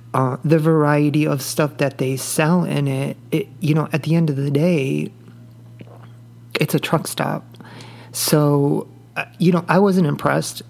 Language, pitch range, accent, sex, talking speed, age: English, 135-165 Hz, American, male, 165 wpm, 30-49